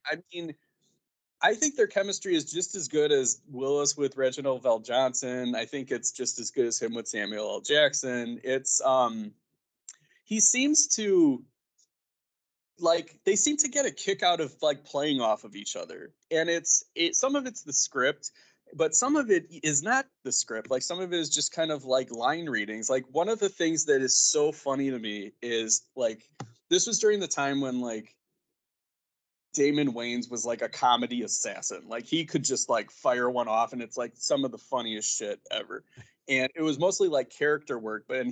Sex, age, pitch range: male, 20-39, 125-175 Hz